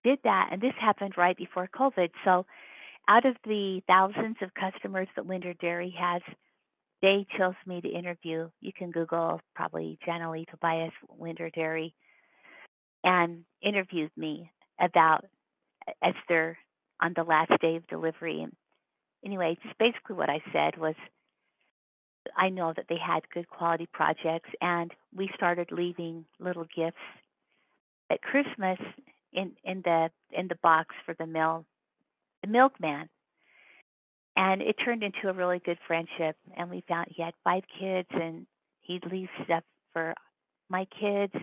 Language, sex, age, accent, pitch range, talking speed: English, female, 50-69, American, 165-200 Hz, 145 wpm